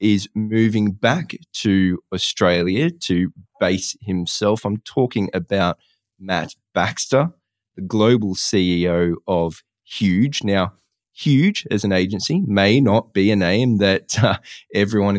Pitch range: 95-110 Hz